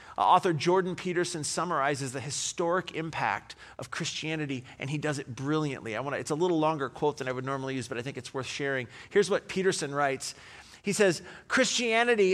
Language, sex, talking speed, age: English, male, 190 wpm, 40-59